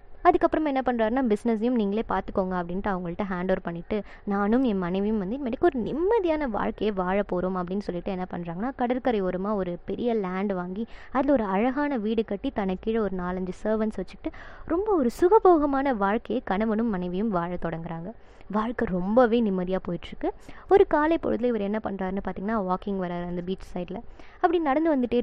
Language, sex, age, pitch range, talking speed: Tamil, male, 20-39, 195-260 Hz, 155 wpm